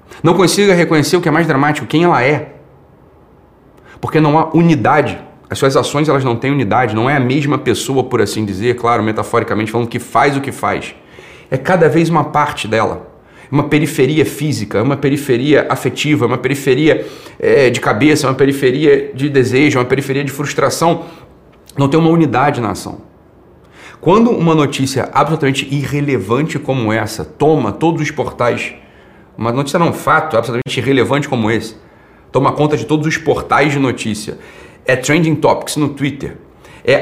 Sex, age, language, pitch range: male, 30-49, Portuguese, 120-150 Hz